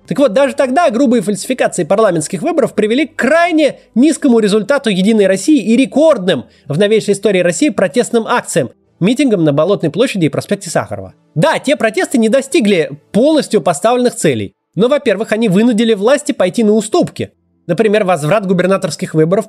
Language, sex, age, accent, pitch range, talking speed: Russian, male, 20-39, native, 175-260 Hz, 155 wpm